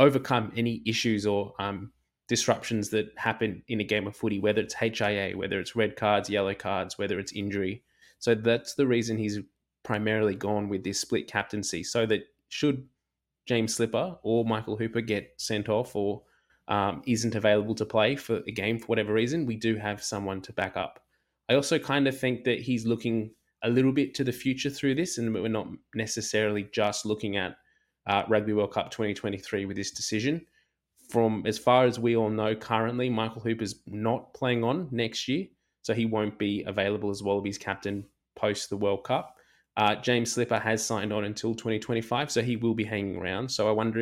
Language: English